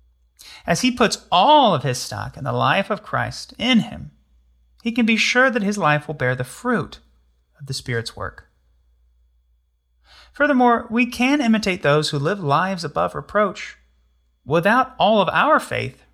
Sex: male